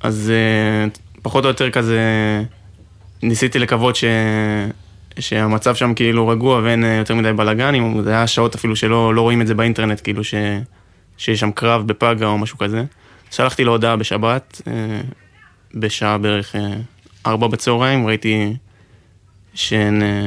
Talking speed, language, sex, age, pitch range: 135 wpm, Hebrew, male, 20-39, 105-115 Hz